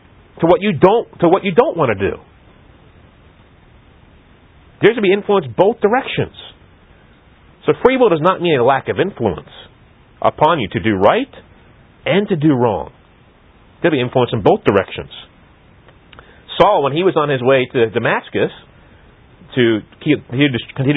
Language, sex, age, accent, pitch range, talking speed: English, male, 40-59, American, 125-190 Hz, 155 wpm